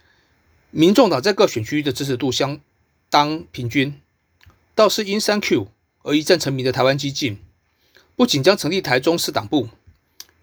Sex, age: male, 30-49